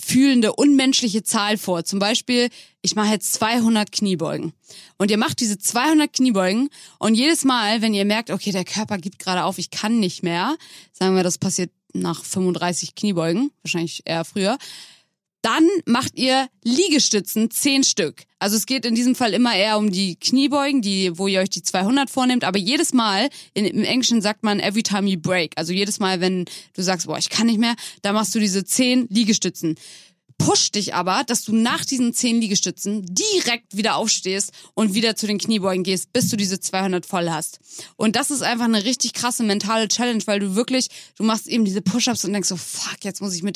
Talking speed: 200 wpm